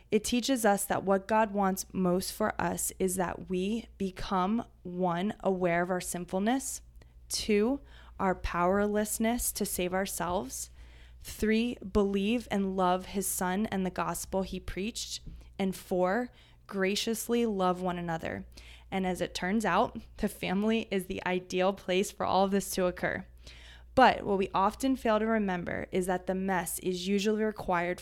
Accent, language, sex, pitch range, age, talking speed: American, English, female, 175-205 Hz, 20-39, 155 wpm